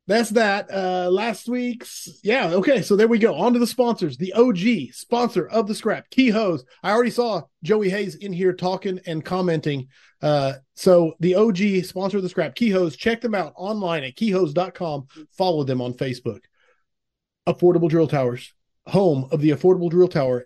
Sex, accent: male, American